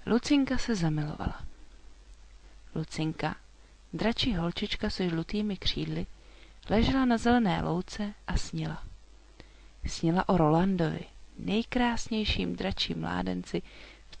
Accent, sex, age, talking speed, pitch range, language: native, female, 40-59, 95 wpm, 155-210 Hz, Czech